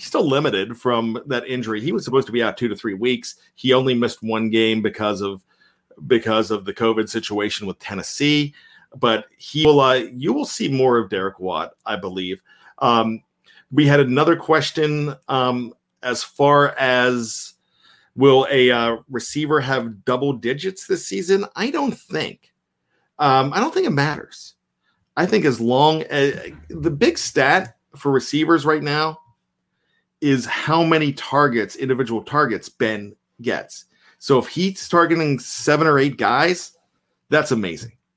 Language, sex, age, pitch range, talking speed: English, male, 40-59, 120-150 Hz, 155 wpm